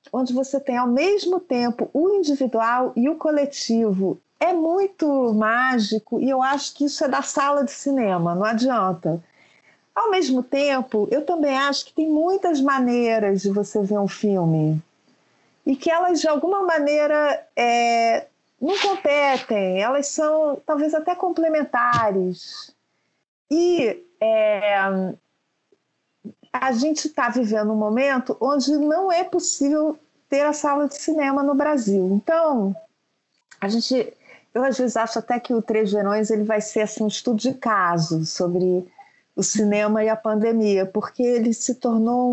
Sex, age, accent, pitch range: female, 40-59, Brazilian, 215-295 Hz